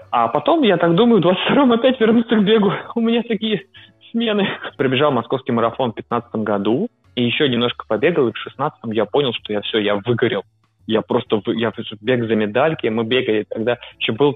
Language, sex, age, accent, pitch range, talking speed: Russian, male, 20-39, native, 110-140 Hz, 195 wpm